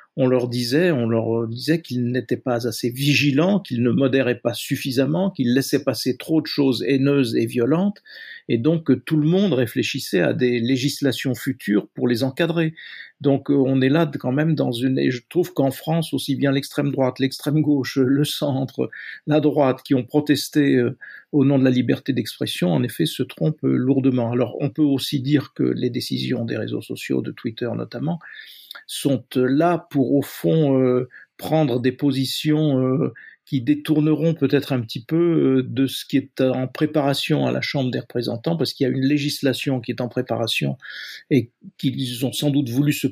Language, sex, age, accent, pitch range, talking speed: French, male, 50-69, French, 125-145 Hz, 190 wpm